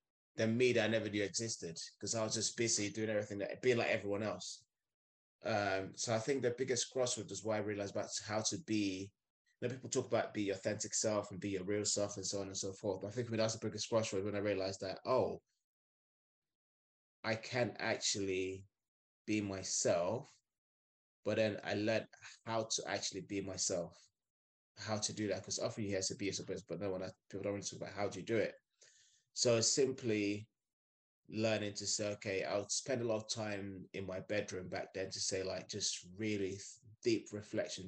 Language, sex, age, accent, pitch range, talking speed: English, male, 20-39, British, 95-110 Hz, 205 wpm